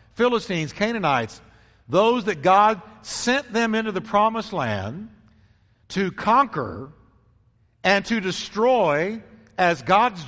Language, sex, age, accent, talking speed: English, male, 60-79, American, 105 wpm